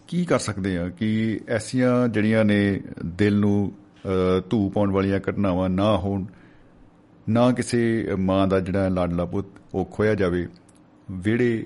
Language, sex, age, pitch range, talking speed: Punjabi, male, 50-69, 90-105 Hz, 135 wpm